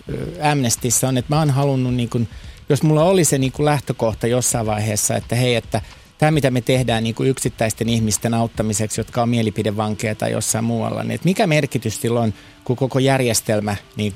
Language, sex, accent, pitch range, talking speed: Finnish, male, native, 115-140 Hz, 175 wpm